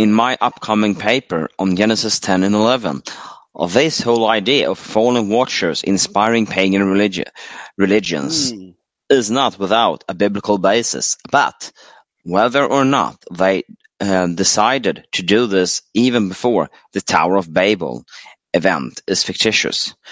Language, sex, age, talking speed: English, male, 30-49, 130 wpm